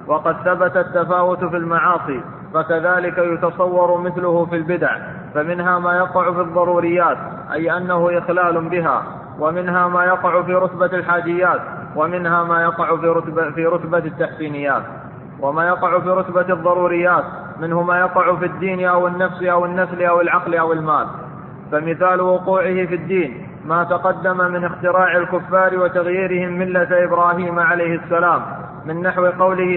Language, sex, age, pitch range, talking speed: Arabic, male, 20-39, 170-180 Hz, 135 wpm